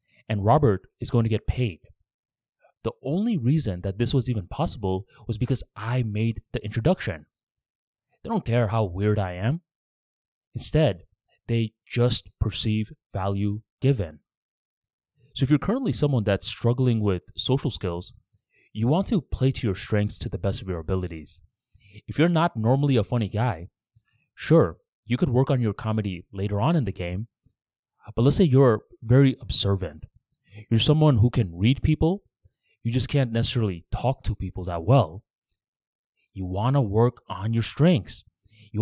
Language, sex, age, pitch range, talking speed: English, male, 20-39, 105-130 Hz, 160 wpm